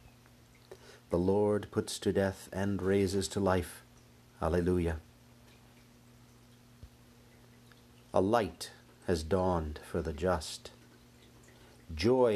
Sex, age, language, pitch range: male, 50-69, English, 85-120 Hz